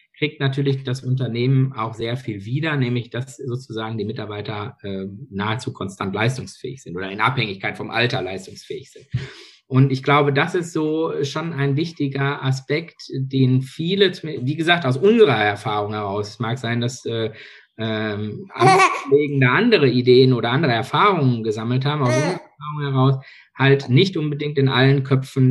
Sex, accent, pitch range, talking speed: male, German, 120-140 Hz, 155 wpm